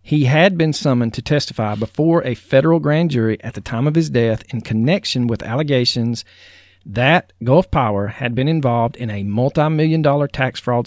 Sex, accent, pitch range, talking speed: male, American, 100-135 Hz, 190 wpm